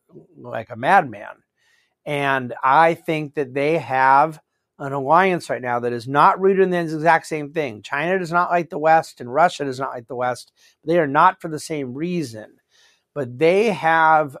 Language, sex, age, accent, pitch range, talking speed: English, male, 50-69, American, 140-175 Hz, 190 wpm